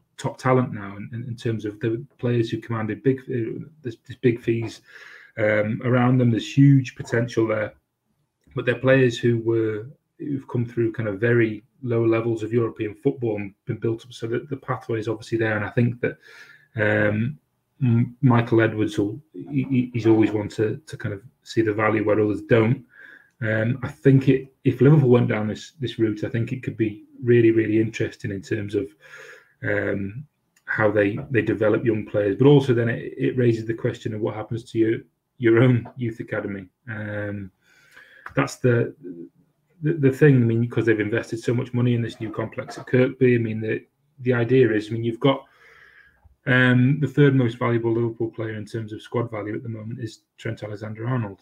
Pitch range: 110-130 Hz